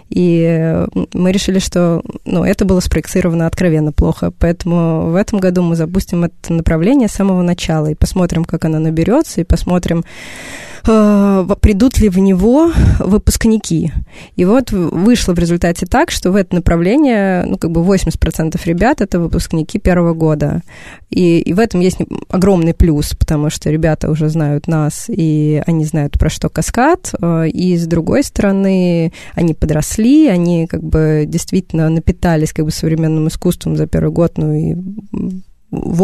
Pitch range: 165-195 Hz